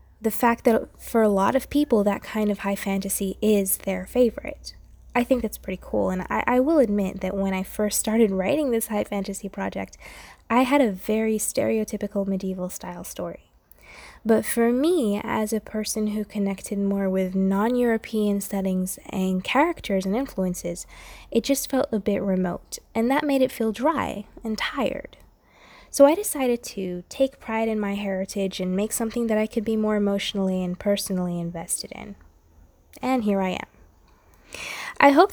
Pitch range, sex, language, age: 195-235 Hz, female, English, 10-29